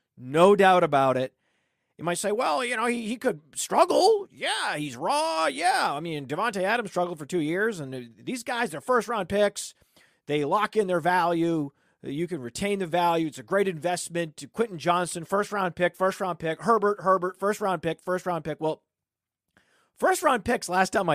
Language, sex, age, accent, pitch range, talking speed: English, male, 40-59, American, 140-195 Hz, 180 wpm